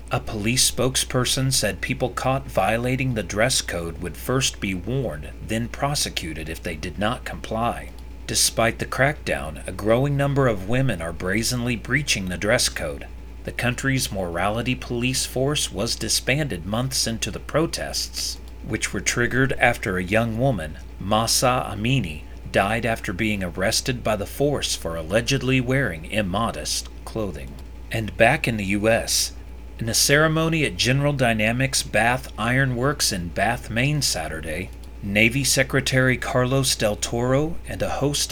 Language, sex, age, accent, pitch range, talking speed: English, male, 40-59, American, 90-130 Hz, 145 wpm